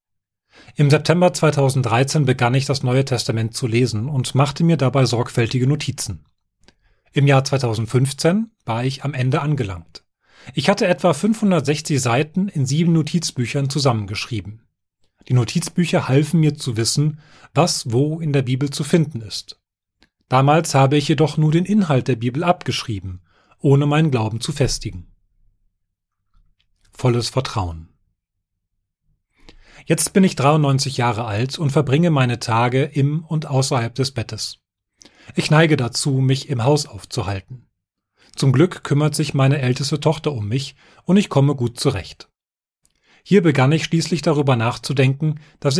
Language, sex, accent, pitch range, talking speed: German, male, German, 115-155 Hz, 140 wpm